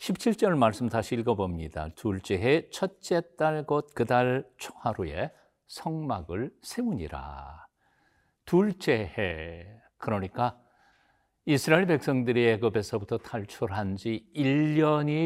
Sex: male